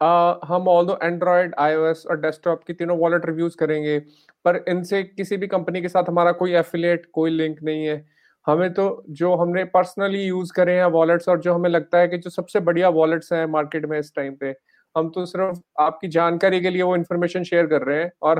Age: 30-49